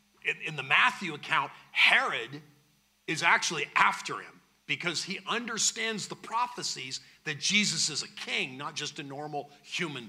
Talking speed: 145 wpm